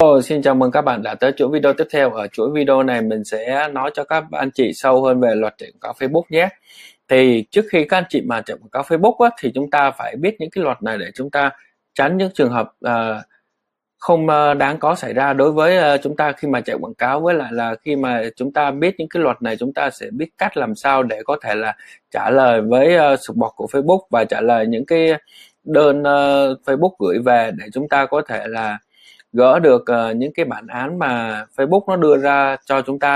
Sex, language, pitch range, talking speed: male, Vietnamese, 125-150 Hz, 250 wpm